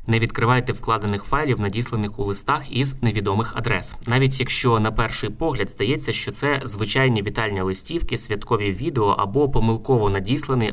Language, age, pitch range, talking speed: Ukrainian, 20-39, 105-125 Hz, 145 wpm